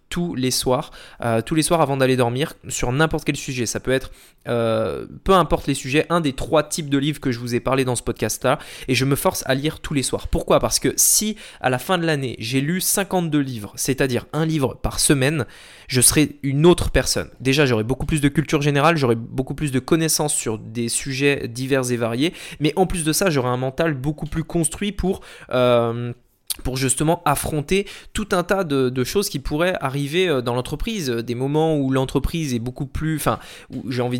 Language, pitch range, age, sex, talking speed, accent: French, 125-160 Hz, 20-39, male, 215 wpm, French